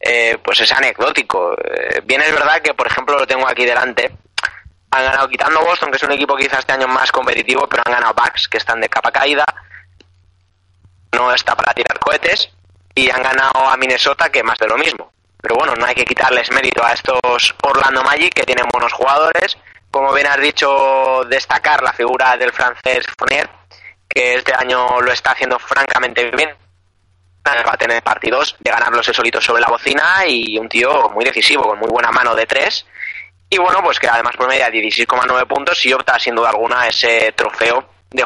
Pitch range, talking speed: 110-140 Hz, 195 wpm